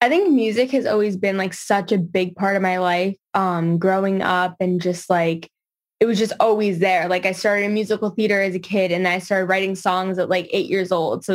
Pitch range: 185-225 Hz